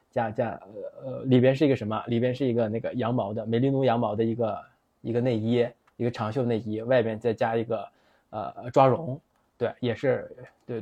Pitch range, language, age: 115-140 Hz, Chinese, 20-39